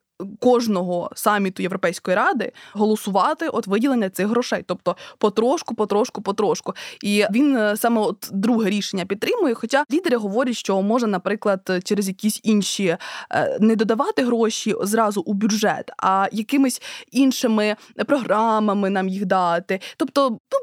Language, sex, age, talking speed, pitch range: Ukrainian, female, 20-39, 130 wpm, 195-250 Hz